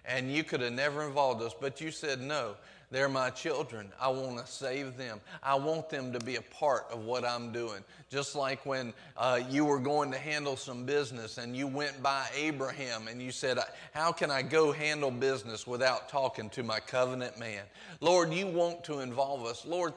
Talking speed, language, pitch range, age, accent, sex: 205 wpm, English, 125-150 Hz, 40-59, American, male